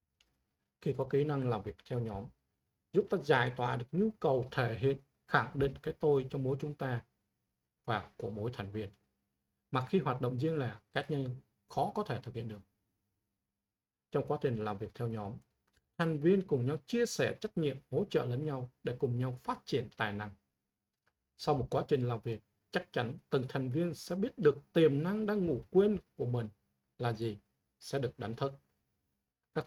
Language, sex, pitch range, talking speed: Vietnamese, male, 115-145 Hz, 200 wpm